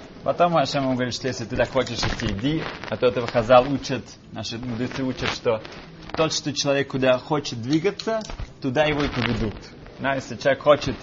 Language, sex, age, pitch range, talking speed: Russian, male, 20-39, 125-155 Hz, 175 wpm